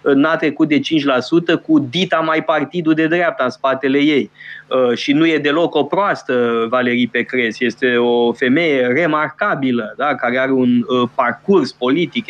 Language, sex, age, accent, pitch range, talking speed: Romanian, male, 20-39, native, 125-175 Hz, 160 wpm